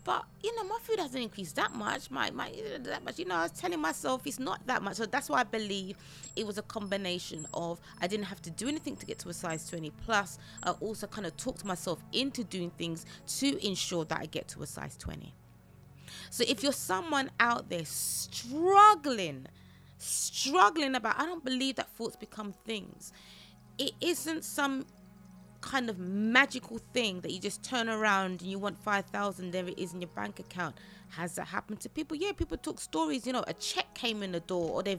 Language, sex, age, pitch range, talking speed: English, female, 20-39, 180-255 Hz, 215 wpm